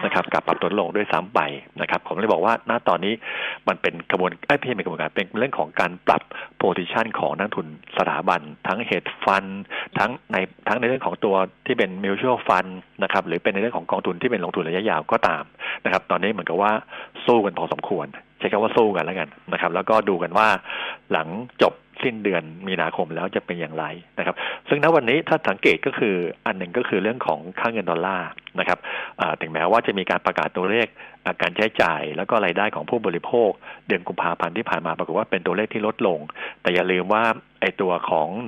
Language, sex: Thai, male